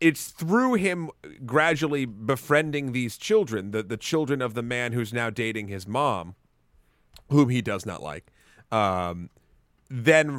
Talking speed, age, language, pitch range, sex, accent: 145 wpm, 30-49, English, 105-135 Hz, male, American